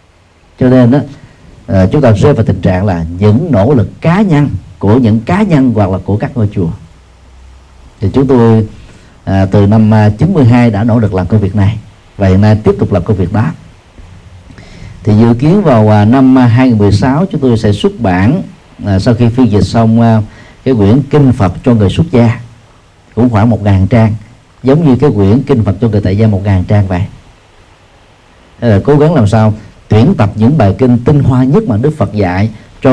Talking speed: 190 wpm